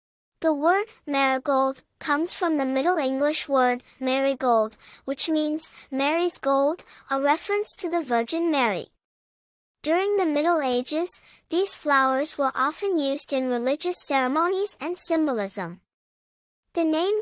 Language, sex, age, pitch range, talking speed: English, male, 10-29, 270-330 Hz, 125 wpm